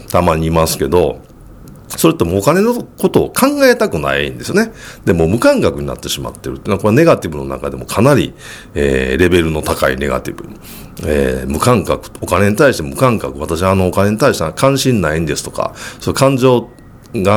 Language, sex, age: Japanese, male, 50-69